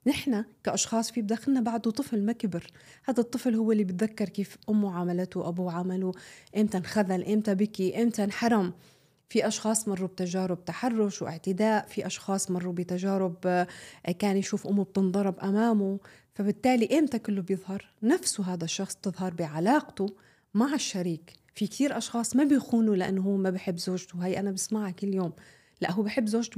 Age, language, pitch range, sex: 30-49, Arabic, 185-225 Hz, female